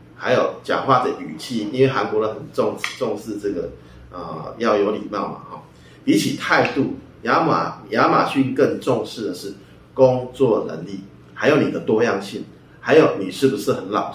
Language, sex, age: Chinese, male, 30-49